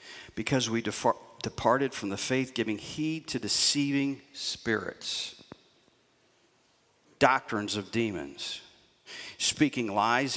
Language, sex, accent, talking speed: English, male, American, 95 wpm